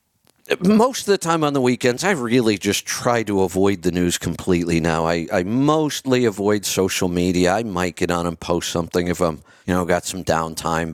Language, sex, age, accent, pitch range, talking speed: English, male, 50-69, American, 95-135 Hz, 205 wpm